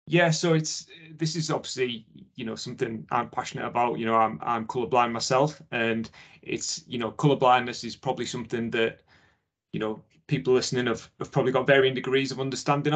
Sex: male